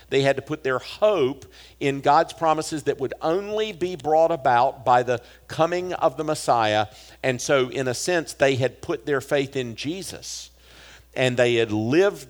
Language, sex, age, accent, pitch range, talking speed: English, male, 50-69, American, 115-165 Hz, 180 wpm